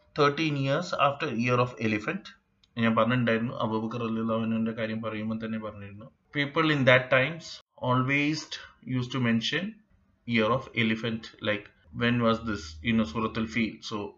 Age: 20-39